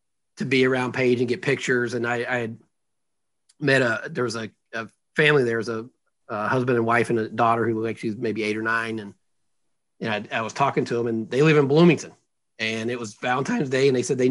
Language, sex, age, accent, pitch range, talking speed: English, male, 40-59, American, 120-150 Hz, 245 wpm